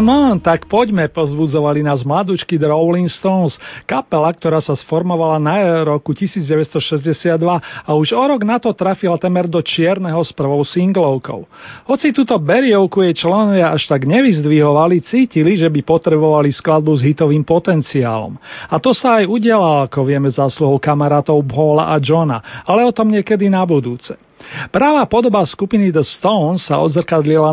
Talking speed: 155 wpm